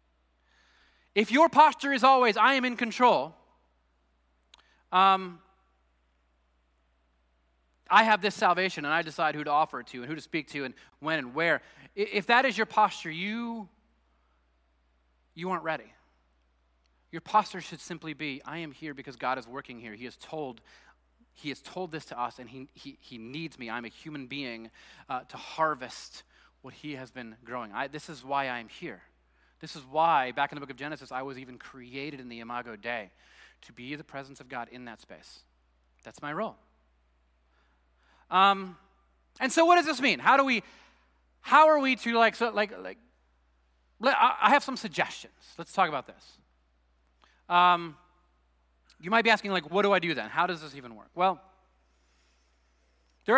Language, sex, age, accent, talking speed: English, male, 30-49, American, 180 wpm